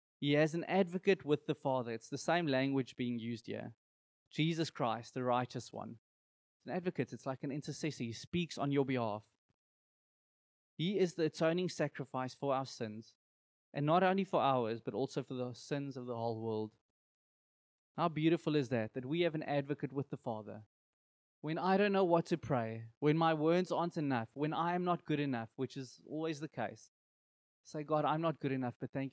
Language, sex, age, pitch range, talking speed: English, male, 20-39, 115-155 Hz, 200 wpm